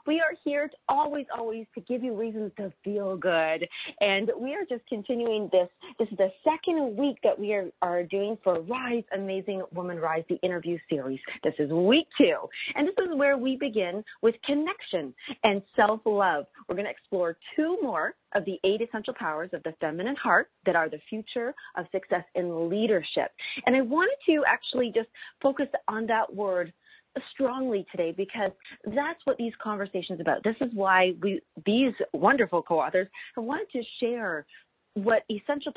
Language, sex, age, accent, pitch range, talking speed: English, female, 30-49, American, 185-260 Hz, 175 wpm